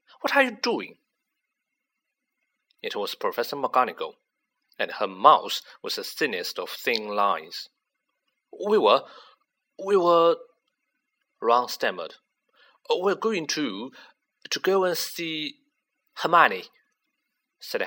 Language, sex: Chinese, male